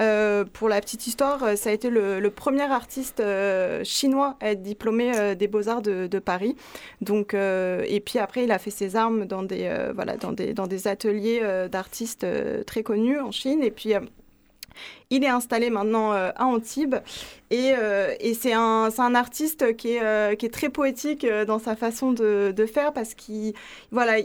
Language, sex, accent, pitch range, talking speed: French, female, French, 205-240 Hz, 205 wpm